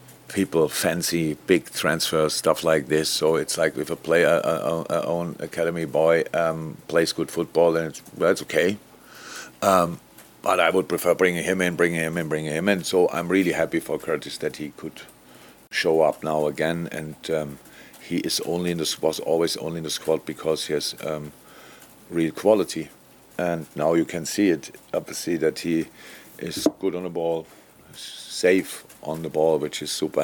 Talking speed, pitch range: 190 wpm, 75-85 Hz